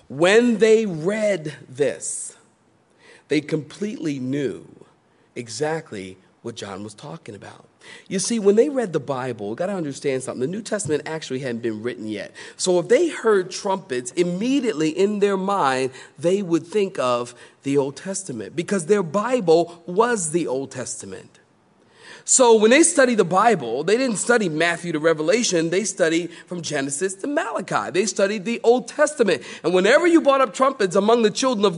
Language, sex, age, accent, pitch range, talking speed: English, male, 40-59, American, 160-225 Hz, 170 wpm